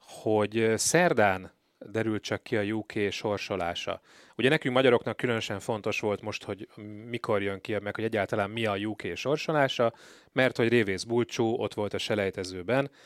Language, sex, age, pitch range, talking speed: Hungarian, male, 30-49, 105-130 Hz, 155 wpm